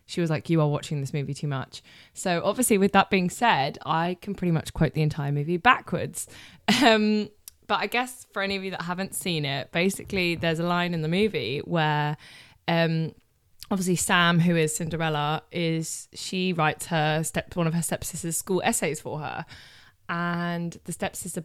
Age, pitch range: 20-39, 160-195 Hz